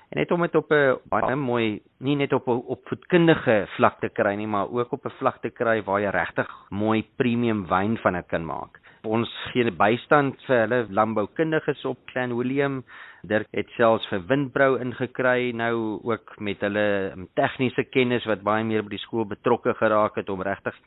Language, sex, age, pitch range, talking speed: Swedish, male, 40-59, 100-125 Hz, 195 wpm